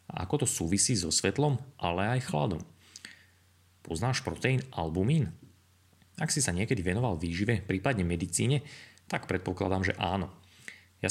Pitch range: 90-115 Hz